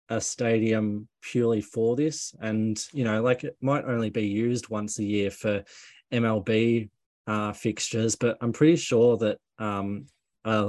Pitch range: 105-120 Hz